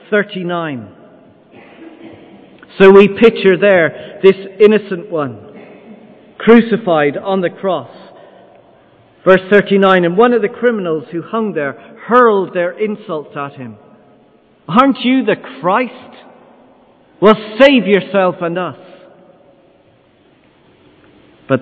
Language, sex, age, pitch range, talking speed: English, male, 50-69, 150-195 Hz, 105 wpm